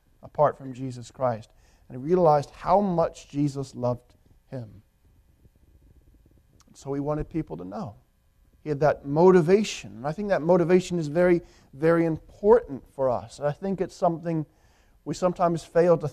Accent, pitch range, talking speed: American, 125-170 Hz, 155 wpm